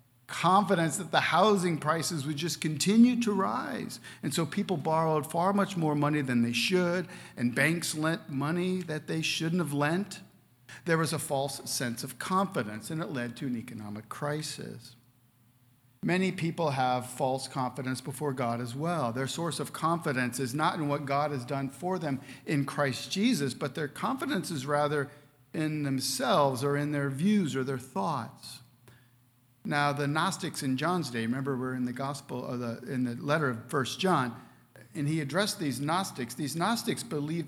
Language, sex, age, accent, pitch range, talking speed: English, male, 50-69, American, 125-165 Hz, 175 wpm